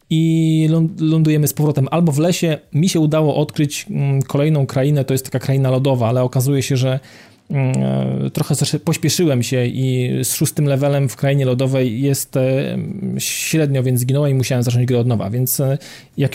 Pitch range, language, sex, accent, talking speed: 130-160 Hz, Polish, male, native, 160 wpm